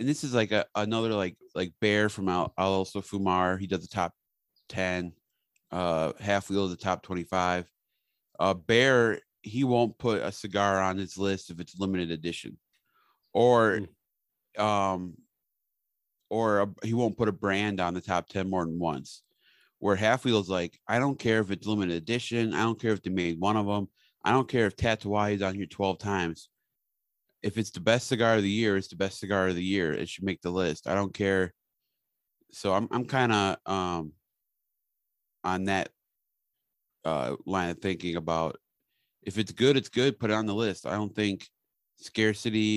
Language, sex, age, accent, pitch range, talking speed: English, male, 30-49, American, 90-110 Hz, 190 wpm